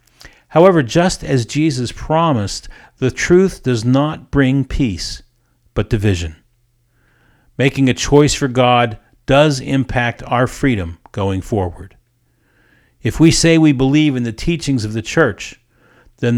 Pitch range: 115-135 Hz